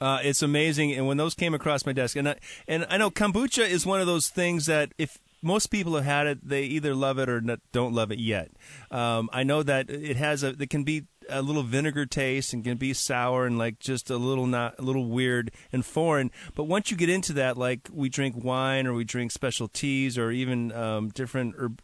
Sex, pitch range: male, 125-155 Hz